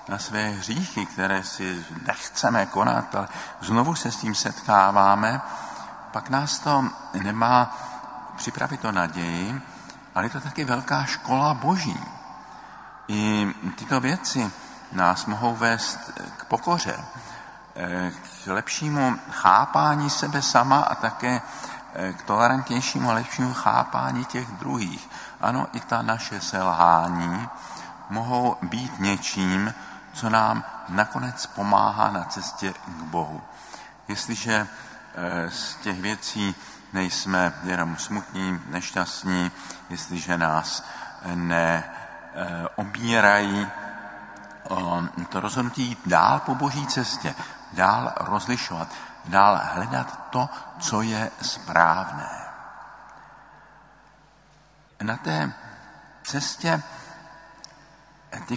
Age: 50-69